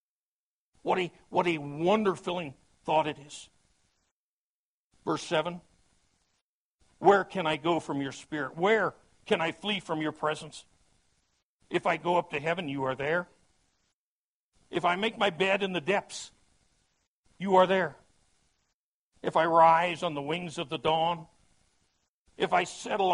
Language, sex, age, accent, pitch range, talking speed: English, male, 60-79, American, 135-175 Hz, 145 wpm